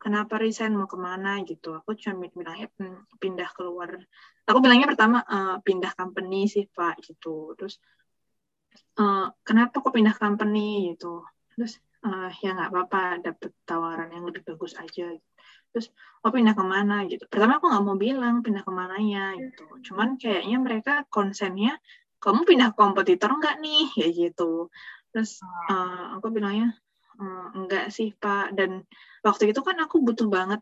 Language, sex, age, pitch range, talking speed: Indonesian, female, 20-39, 185-235 Hz, 150 wpm